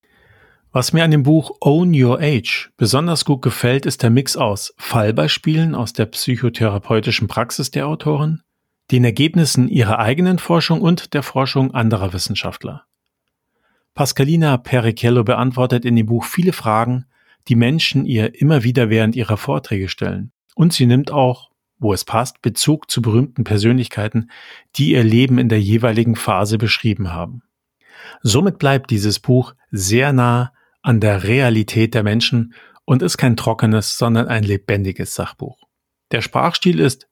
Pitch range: 110-140 Hz